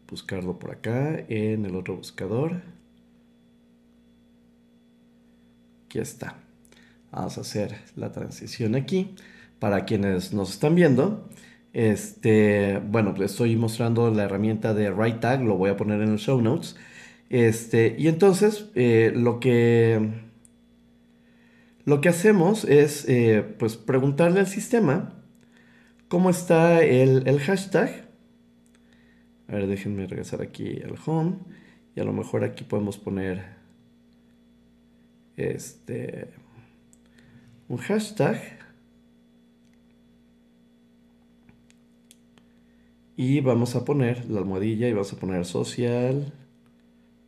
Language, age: Spanish, 40-59